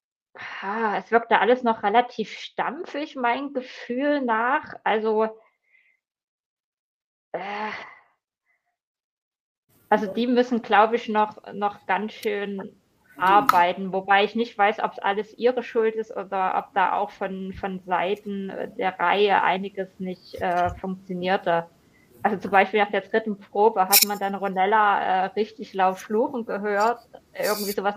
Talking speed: 130 wpm